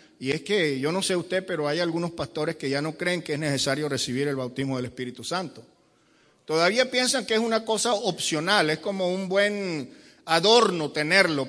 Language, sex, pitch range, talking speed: Spanish, male, 150-190 Hz, 195 wpm